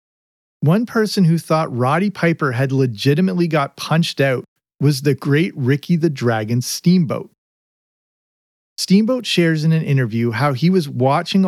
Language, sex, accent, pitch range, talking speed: English, male, American, 130-175 Hz, 140 wpm